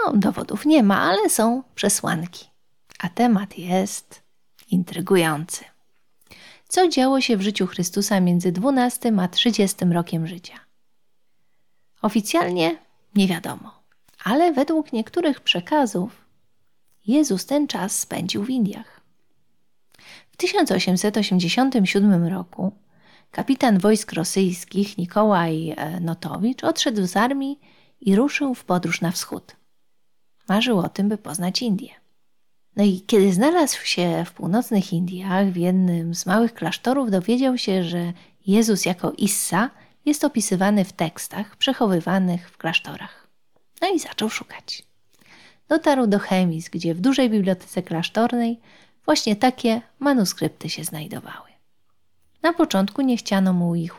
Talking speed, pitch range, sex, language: 120 wpm, 180-240 Hz, female, English